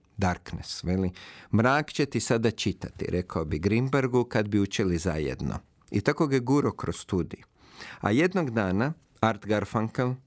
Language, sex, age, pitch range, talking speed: Croatian, male, 50-69, 100-130 Hz, 145 wpm